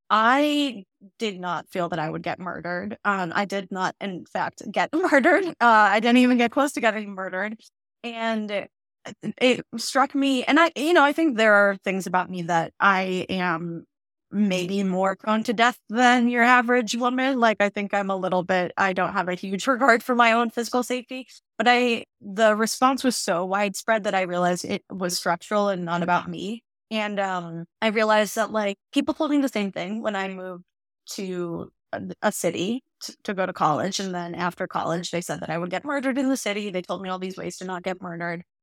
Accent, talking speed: American, 215 wpm